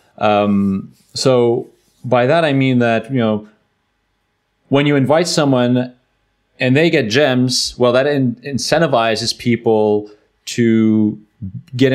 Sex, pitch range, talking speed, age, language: male, 100-125 Hz, 120 wpm, 30-49, English